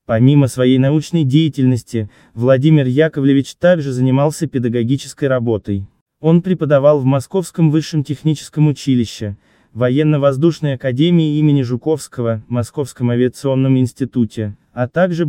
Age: 20-39